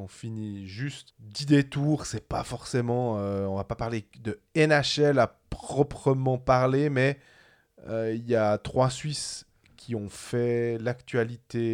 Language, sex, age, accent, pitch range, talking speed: French, male, 20-39, French, 110-135 Hz, 155 wpm